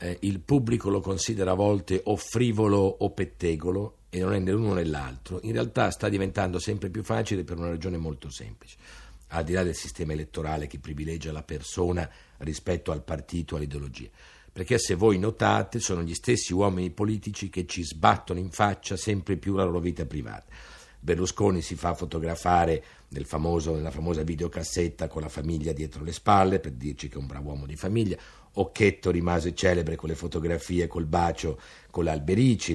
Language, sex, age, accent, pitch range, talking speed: Italian, male, 50-69, native, 80-100 Hz, 175 wpm